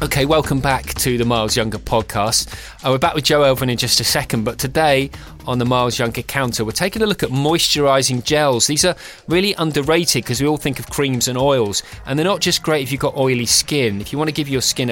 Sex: male